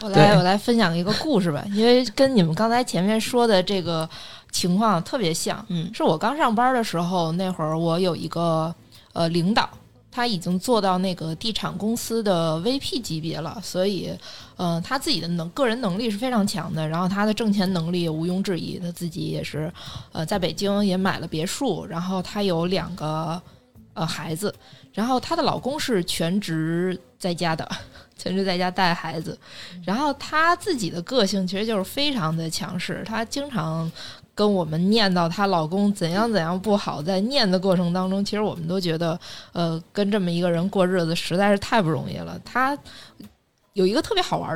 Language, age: Chinese, 20-39